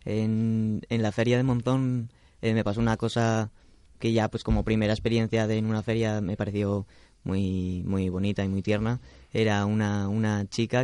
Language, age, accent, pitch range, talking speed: Spanish, 20-39, Spanish, 100-115 Hz, 185 wpm